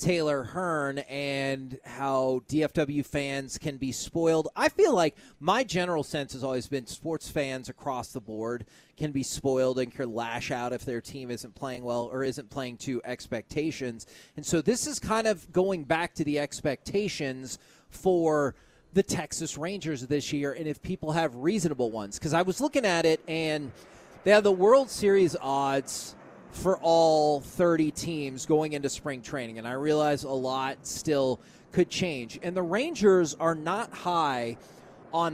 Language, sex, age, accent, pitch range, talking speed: English, male, 30-49, American, 135-180 Hz, 170 wpm